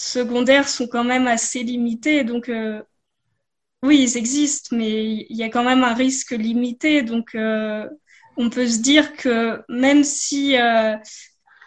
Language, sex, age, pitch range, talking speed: French, female, 20-39, 220-260 Hz, 155 wpm